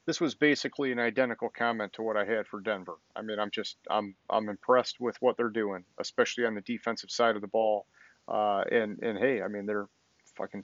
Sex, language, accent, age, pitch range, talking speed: male, English, American, 40-59, 110-135 Hz, 220 wpm